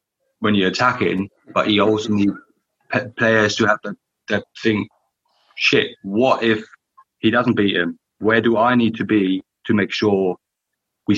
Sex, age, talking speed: male, 30-49, 165 wpm